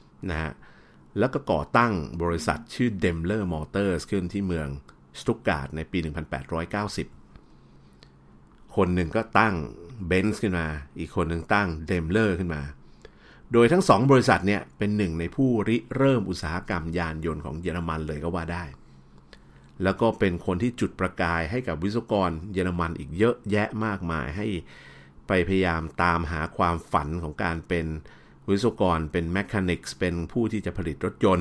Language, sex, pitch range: Thai, male, 75-105 Hz